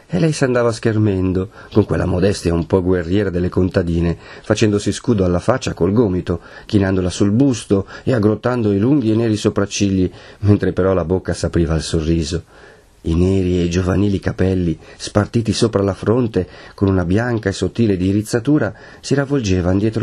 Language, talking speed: Italian, 160 wpm